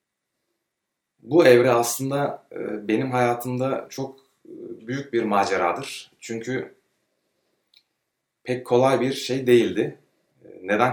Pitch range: 105-130 Hz